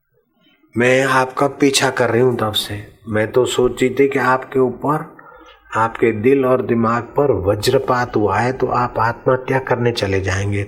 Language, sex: Hindi, male